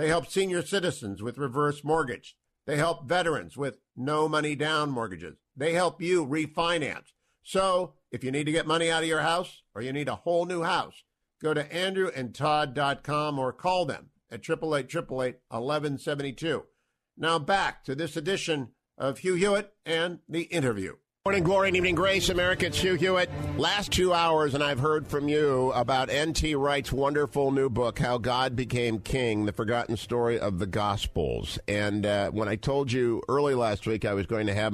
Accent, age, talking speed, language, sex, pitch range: American, 50-69, 180 wpm, English, male, 115-160 Hz